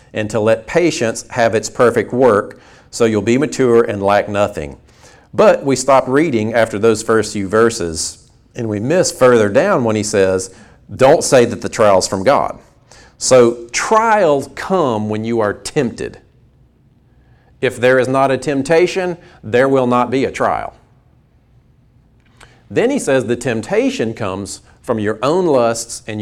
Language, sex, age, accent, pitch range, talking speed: English, male, 40-59, American, 110-140 Hz, 160 wpm